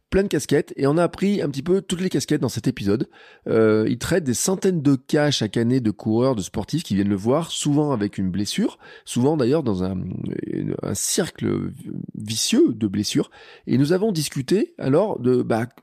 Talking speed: 205 wpm